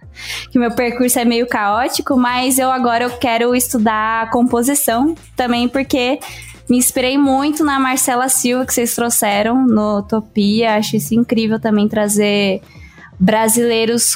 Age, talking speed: 10-29, 135 wpm